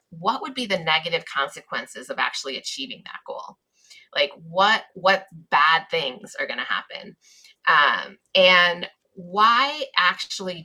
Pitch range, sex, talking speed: 170-235 Hz, female, 130 wpm